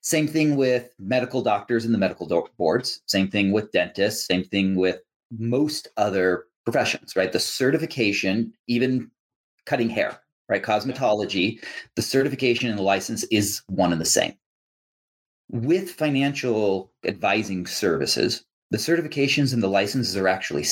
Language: English